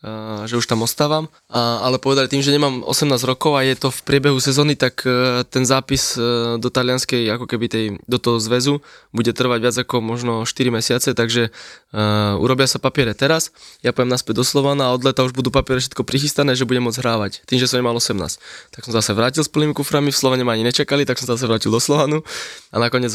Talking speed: 215 wpm